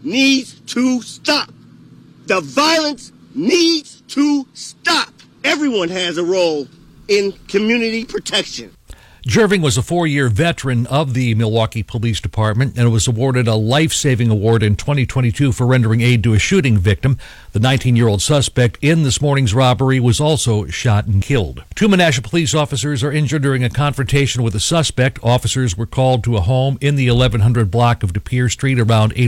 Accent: American